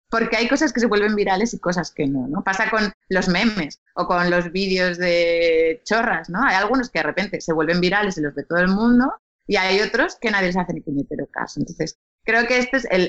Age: 20-39